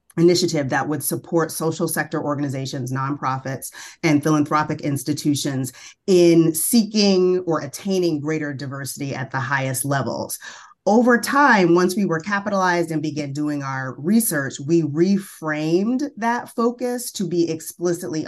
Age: 30-49